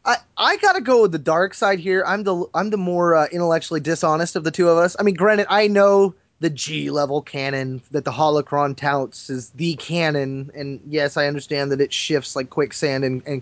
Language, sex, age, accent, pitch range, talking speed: English, male, 20-39, American, 145-200 Hz, 220 wpm